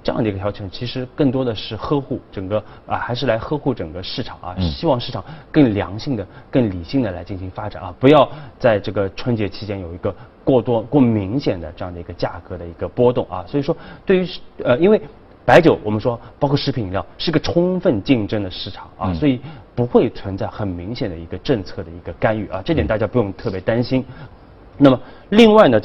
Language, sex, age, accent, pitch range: Chinese, male, 30-49, native, 95-130 Hz